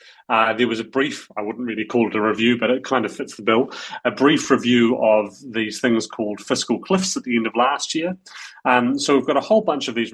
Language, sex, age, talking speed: English, male, 30-49, 255 wpm